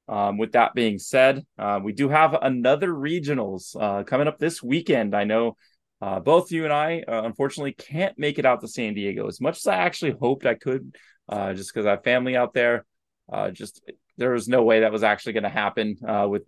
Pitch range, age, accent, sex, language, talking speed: 105-135 Hz, 20-39, American, male, English, 225 wpm